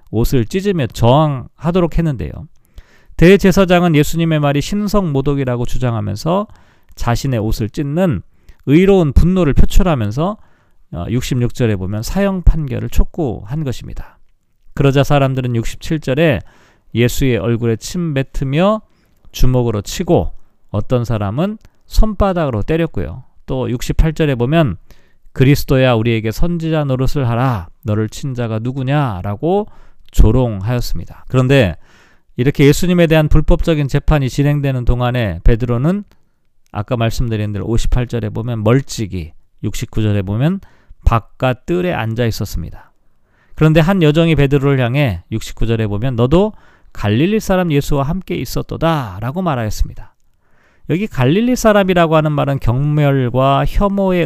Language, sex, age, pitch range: Korean, male, 40-59, 115-160 Hz